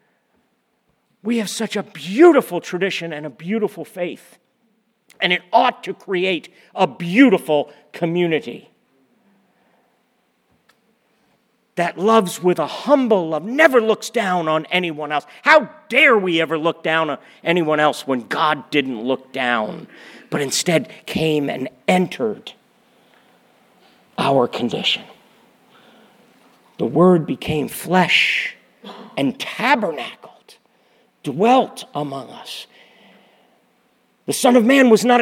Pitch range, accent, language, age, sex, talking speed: 155-235 Hz, American, English, 50-69, male, 110 wpm